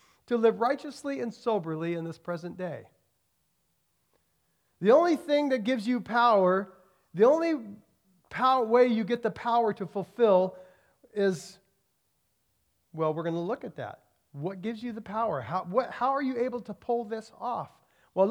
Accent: American